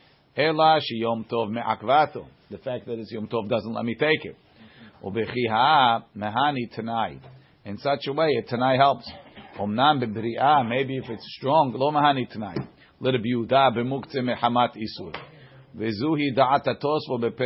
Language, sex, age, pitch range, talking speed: English, male, 50-69, 115-140 Hz, 95 wpm